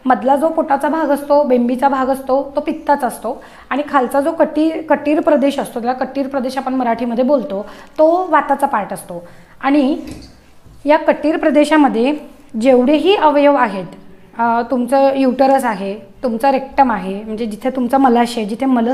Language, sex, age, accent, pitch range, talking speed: Marathi, female, 20-39, native, 235-290 Hz, 150 wpm